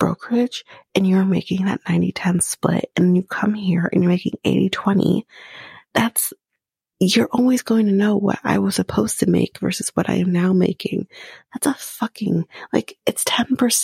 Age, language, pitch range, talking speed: 30-49, English, 175-210 Hz, 165 wpm